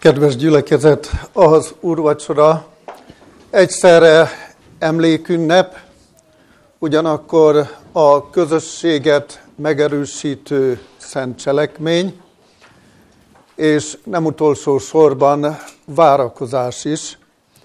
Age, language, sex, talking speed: 60-79, Hungarian, male, 60 wpm